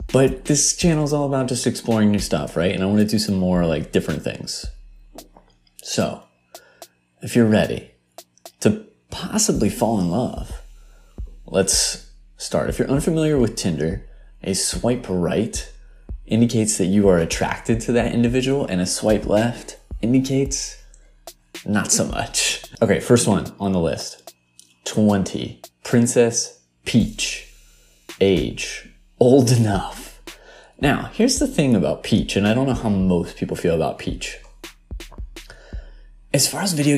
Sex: male